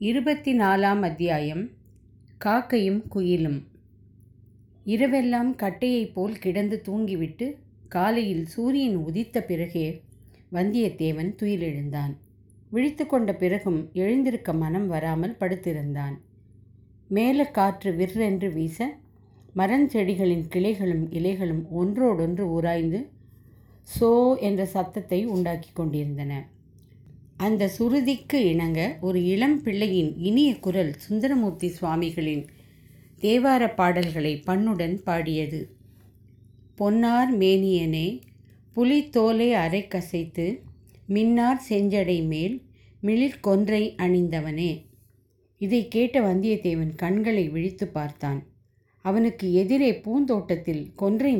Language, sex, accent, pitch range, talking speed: Tamil, female, native, 155-215 Hz, 80 wpm